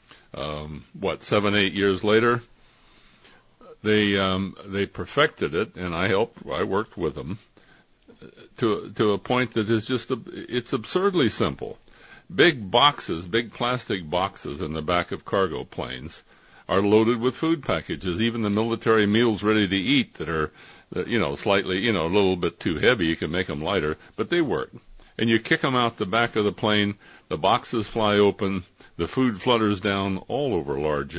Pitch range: 95-120 Hz